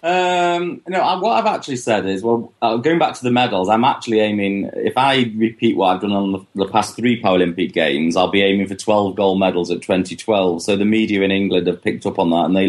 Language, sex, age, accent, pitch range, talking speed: English, male, 30-49, British, 90-110 Hz, 245 wpm